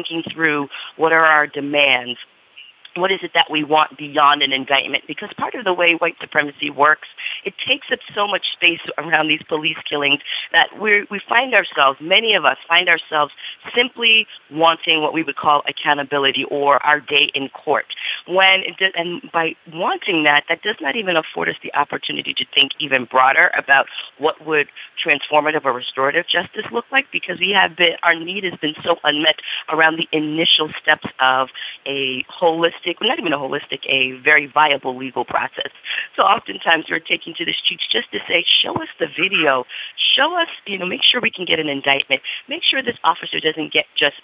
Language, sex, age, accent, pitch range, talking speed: English, female, 40-59, American, 140-175 Hz, 190 wpm